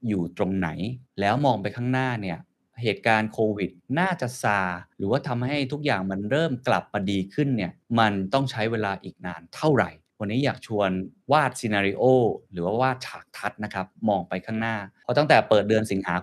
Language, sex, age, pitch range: Thai, male, 20-39, 95-125 Hz